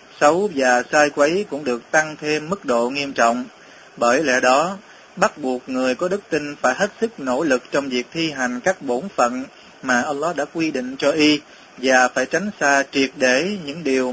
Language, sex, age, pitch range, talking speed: Vietnamese, male, 20-39, 125-160 Hz, 205 wpm